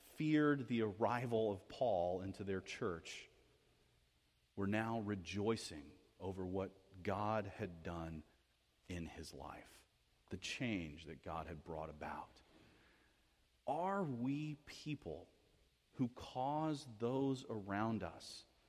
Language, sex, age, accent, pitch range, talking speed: English, male, 40-59, American, 85-120 Hz, 110 wpm